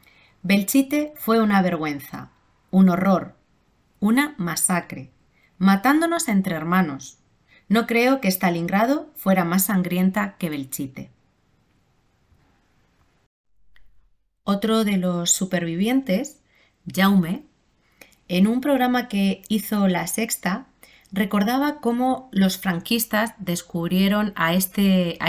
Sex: female